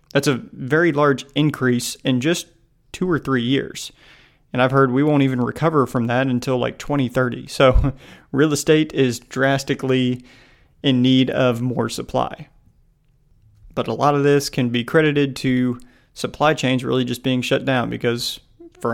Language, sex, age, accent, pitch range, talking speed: English, male, 30-49, American, 125-145 Hz, 160 wpm